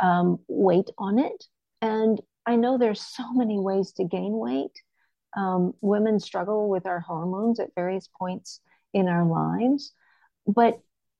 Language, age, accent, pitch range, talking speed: English, 50-69, American, 200-260 Hz, 145 wpm